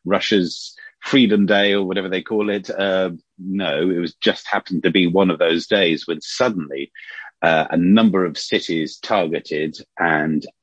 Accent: British